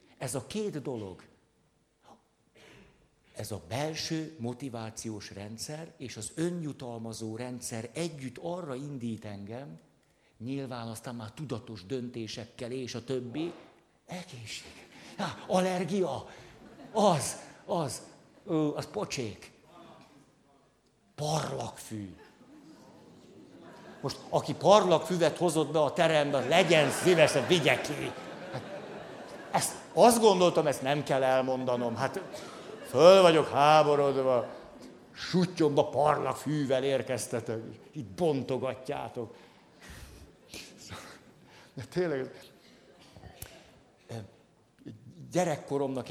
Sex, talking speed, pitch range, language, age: male, 85 wpm, 120-160 Hz, Hungarian, 60-79